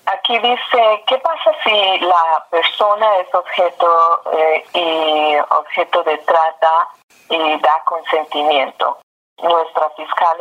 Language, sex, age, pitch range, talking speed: English, female, 30-49, 155-180 Hz, 110 wpm